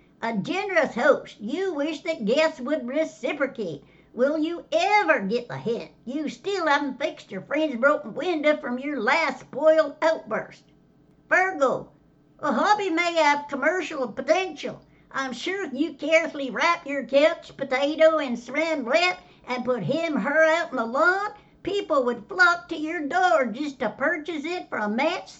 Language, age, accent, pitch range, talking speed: English, 60-79, American, 275-330 Hz, 160 wpm